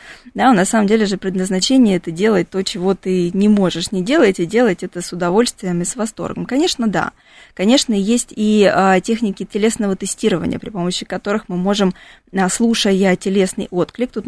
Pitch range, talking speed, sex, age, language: 185-230 Hz, 165 wpm, female, 20-39, Russian